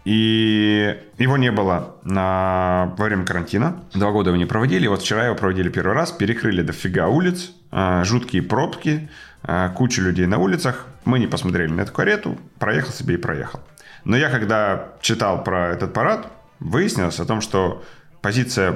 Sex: male